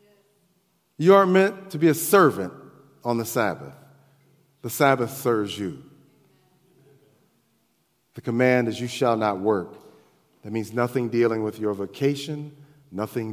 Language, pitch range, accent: English, 100-140 Hz, American